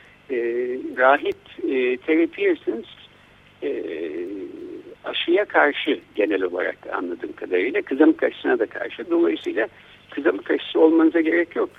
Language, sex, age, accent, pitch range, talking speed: Turkish, male, 60-79, native, 315-375 Hz, 95 wpm